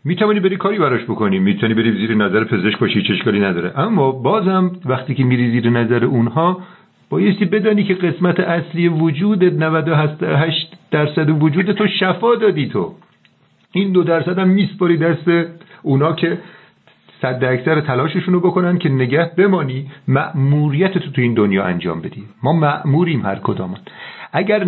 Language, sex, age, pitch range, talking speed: Persian, male, 50-69, 130-180 Hz, 150 wpm